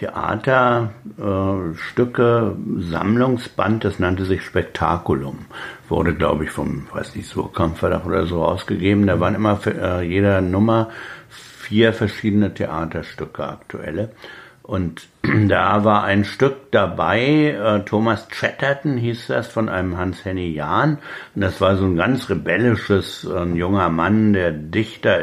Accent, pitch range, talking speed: German, 80-105 Hz, 130 wpm